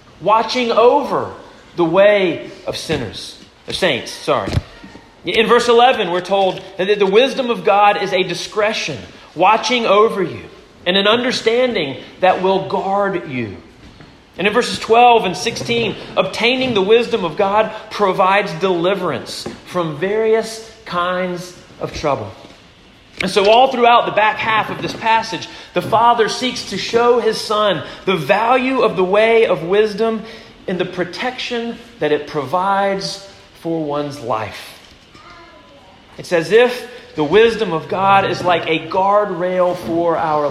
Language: English